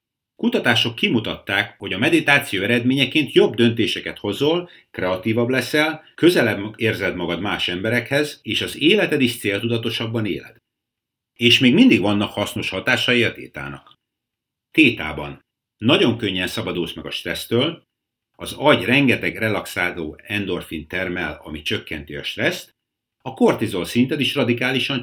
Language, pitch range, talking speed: Hungarian, 95-130 Hz, 125 wpm